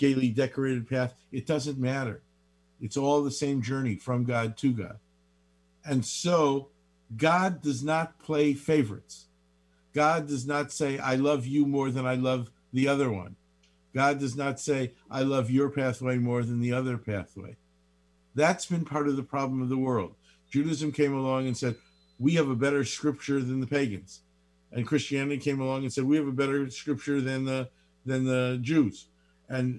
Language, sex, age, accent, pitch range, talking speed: English, male, 50-69, American, 110-145 Hz, 175 wpm